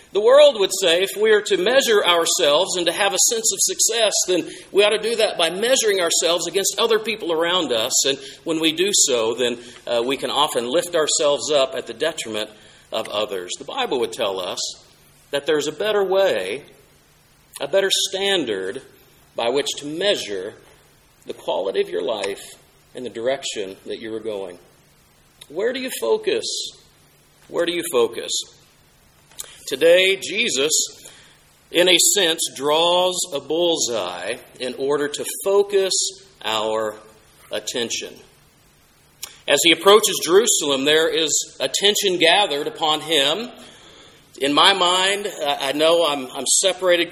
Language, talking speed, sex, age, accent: English, 150 wpm, male, 40-59, American